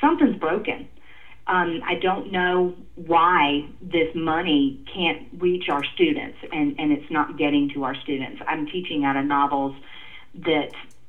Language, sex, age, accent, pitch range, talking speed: English, female, 40-59, American, 140-180 Hz, 145 wpm